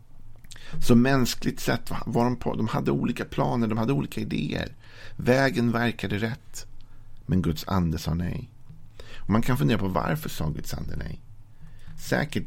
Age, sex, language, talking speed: 50-69, male, Swedish, 160 wpm